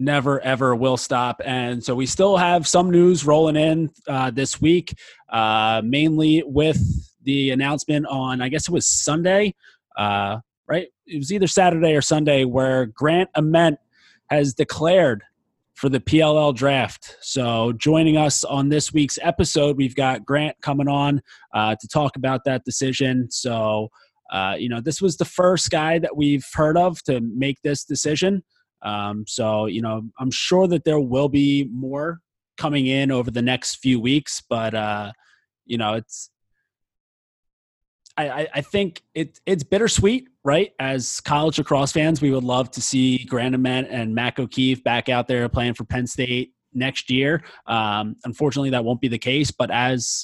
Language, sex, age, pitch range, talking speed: English, male, 30-49, 125-155 Hz, 165 wpm